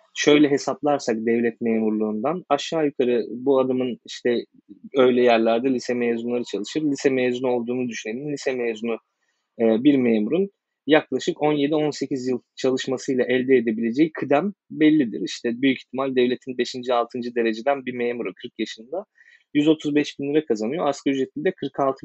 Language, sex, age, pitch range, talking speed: Turkish, male, 30-49, 115-145 Hz, 135 wpm